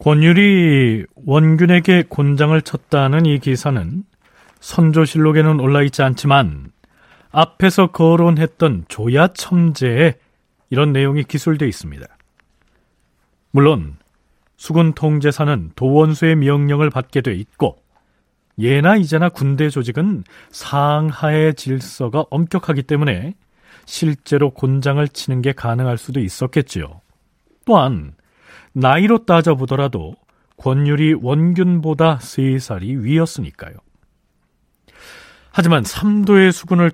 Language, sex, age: Korean, male, 40-59